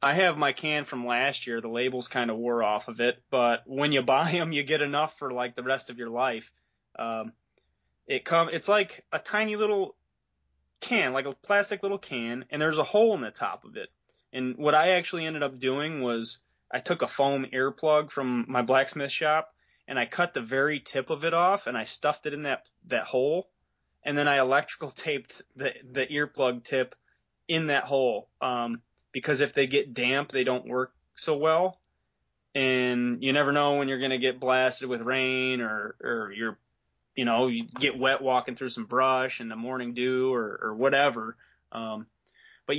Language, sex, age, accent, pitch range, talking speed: English, male, 20-39, American, 125-150 Hz, 200 wpm